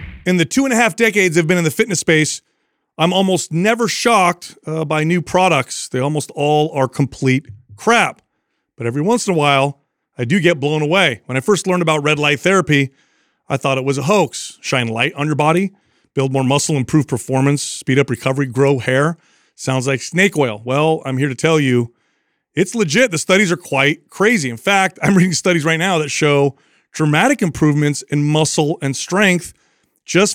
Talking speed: 200 wpm